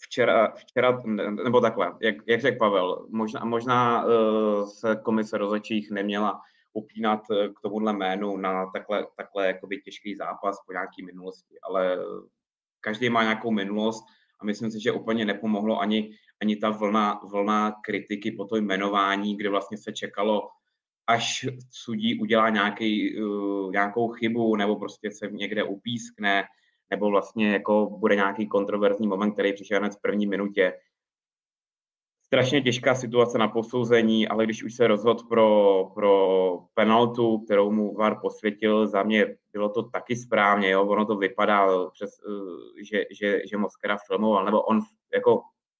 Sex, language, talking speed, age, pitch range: male, Czech, 150 wpm, 20-39, 100-115 Hz